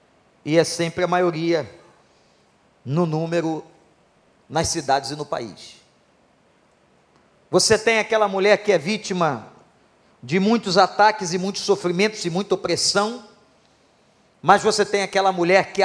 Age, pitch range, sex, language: 50-69, 170-215 Hz, male, Portuguese